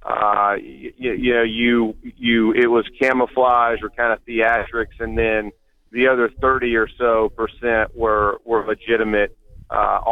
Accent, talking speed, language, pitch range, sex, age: American, 150 wpm, English, 110-120 Hz, male, 40-59